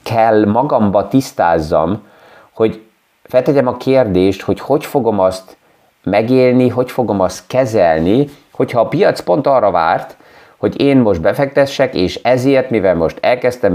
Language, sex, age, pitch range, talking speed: Hungarian, male, 30-49, 105-125 Hz, 130 wpm